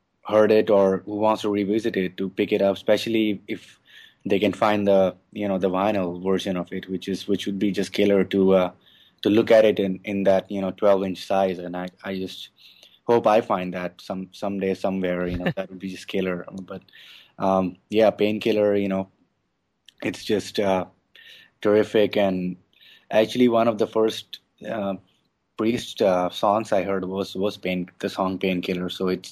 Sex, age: male, 20-39